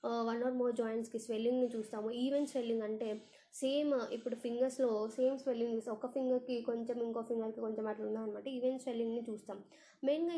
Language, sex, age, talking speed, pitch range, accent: Telugu, female, 20-39, 160 wpm, 220-255 Hz, native